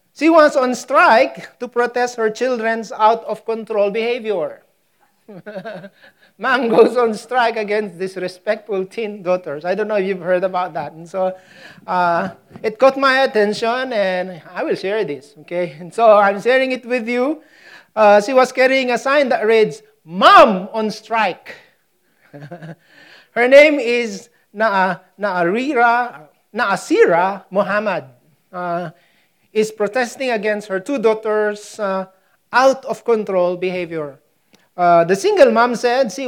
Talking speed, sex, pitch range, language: 130 wpm, male, 195-245 Hz, English